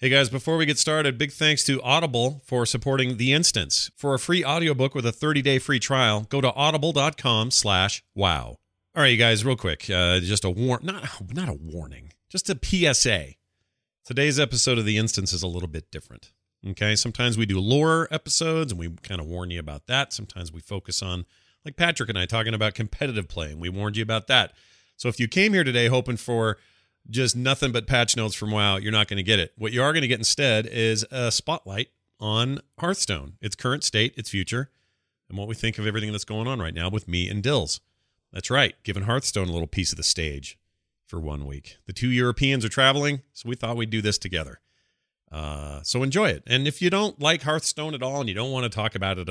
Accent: American